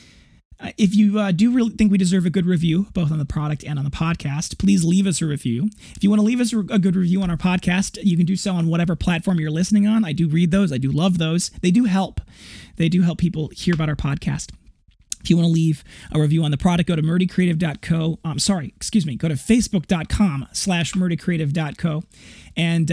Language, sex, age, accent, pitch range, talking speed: English, male, 30-49, American, 150-185 Hz, 230 wpm